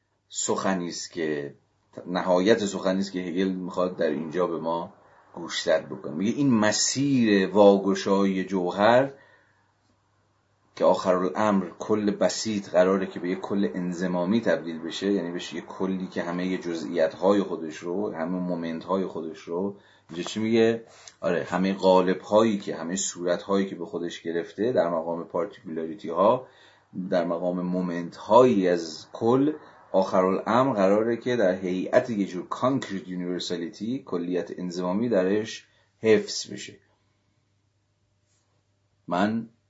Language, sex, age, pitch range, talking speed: Persian, male, 30-49, 85-100 Hz, 125 wpm